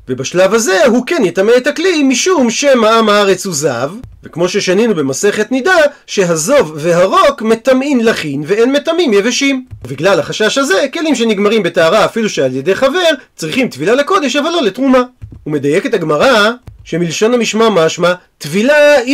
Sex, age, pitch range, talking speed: male, 30-49, 190-265 Hz, 155 wpm